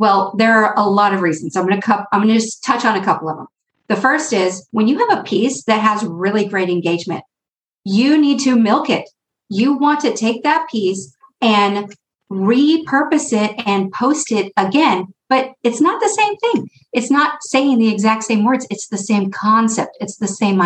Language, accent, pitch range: English, American, 190-255 Hz